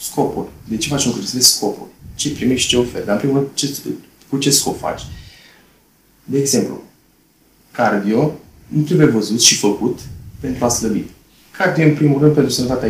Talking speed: 175 wpm